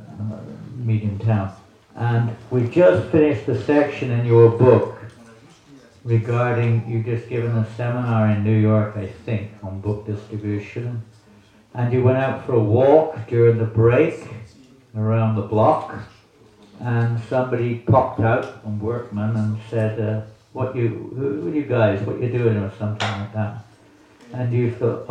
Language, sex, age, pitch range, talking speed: English, male, 60-79, 105-125 Hz, 155 wpm